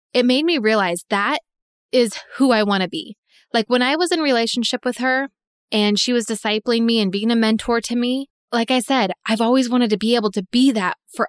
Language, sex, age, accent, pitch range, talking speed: English, female, 20-39, American, 205-255 Hz, 230 wpm